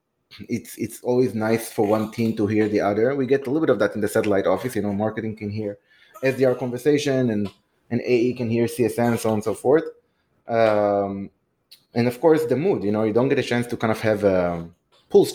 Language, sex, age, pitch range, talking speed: English, male, 30-49, 95-120 Hz, 235 wpm